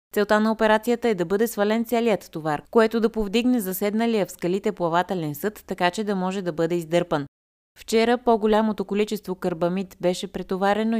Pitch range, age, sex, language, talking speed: 170-220 Hz, 20-39, female, Bulgarian, 165 wpm